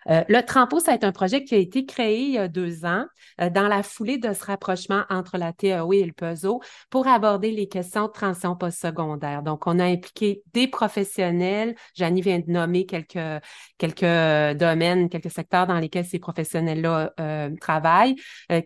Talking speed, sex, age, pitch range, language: 185 wpm, female, 30-49, 170-215 Hz, French